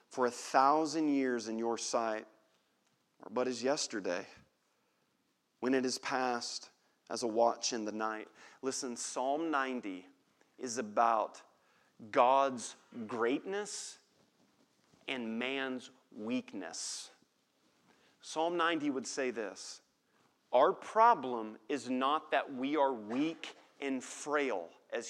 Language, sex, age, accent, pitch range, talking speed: English, male, 40-59, American, 130-220 Hz, 110 wpm